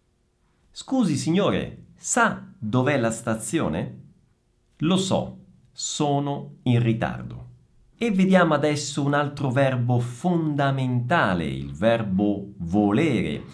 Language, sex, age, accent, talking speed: Italian, male, 50-69, native, 95 wpm